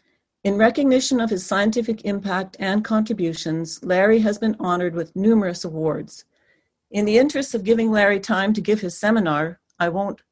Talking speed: 165 wpm